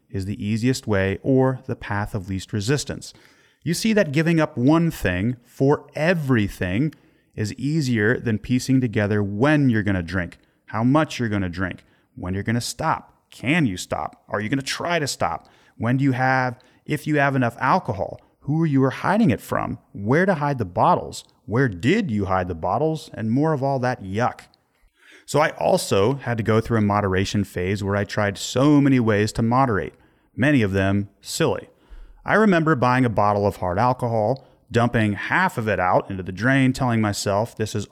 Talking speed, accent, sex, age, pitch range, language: 195 wpm, American, male, 30-49, 100-135 Hz, English